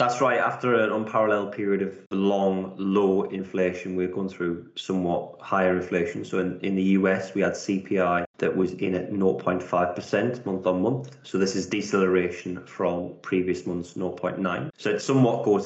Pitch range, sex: 90-100 Hz, male